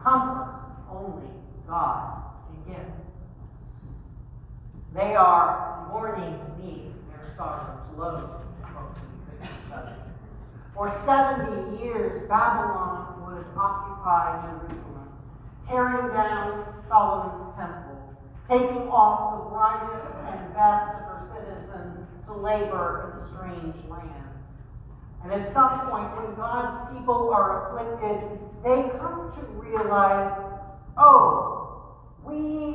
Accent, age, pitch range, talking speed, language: American, 50-69, 180-255 Hz, 95 wpm, English